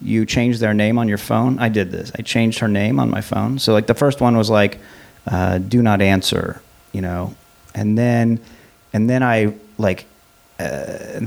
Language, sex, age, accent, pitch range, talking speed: English, male, 40-59, American, 100-120 Hz, 195 wpm